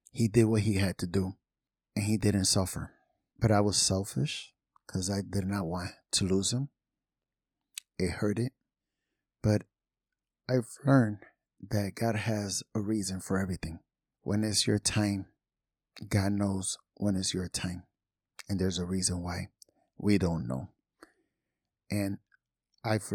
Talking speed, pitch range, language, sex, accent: 145 wpm, 95-110 Hz, English, male, American